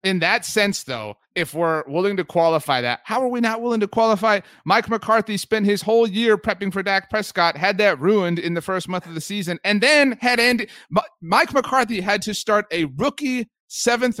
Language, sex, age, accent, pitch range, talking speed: English, male, 30-49, American, 145-210 Hz, 205 wpm